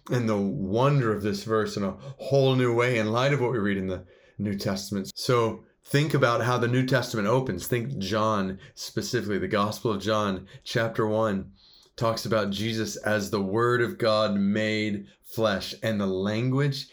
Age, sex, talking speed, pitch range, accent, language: 30-49, male, 180 wpm, 110-150 Hz, American, English